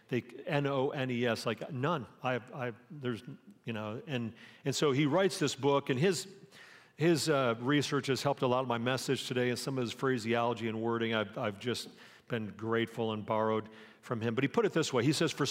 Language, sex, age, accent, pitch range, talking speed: English, male, 50-69, American, 130-165 Hz, 210 wpm